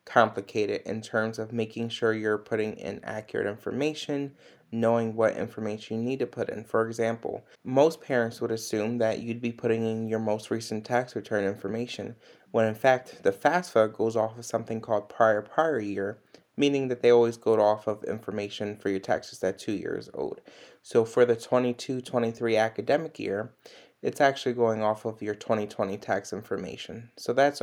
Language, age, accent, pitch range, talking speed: English, 20-39, American, 110-125 Hz, 180 wpm